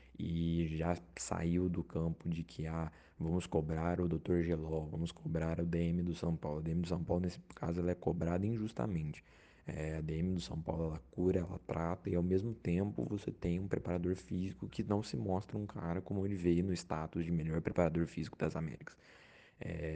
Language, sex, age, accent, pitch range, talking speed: Portuguese, male, 20-39, Brazilian, 80-90 Hz, 205 wpm